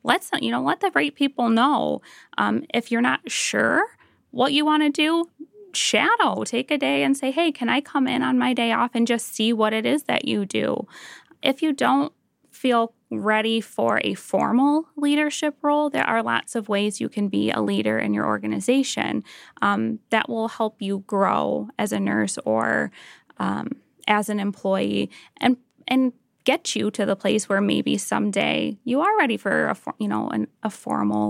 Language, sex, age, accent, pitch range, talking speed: English, female, 10-29, American, 195-260 Hz, 190 wpm